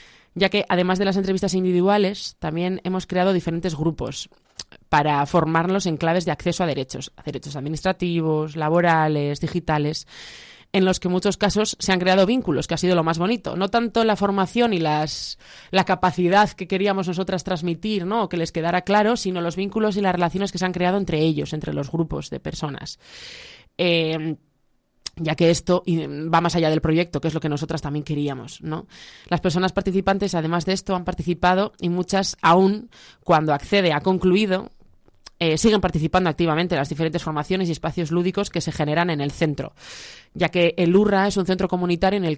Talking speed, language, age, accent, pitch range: 190 wpm, Spanish, 20-39, Spanish, 160-190 Hz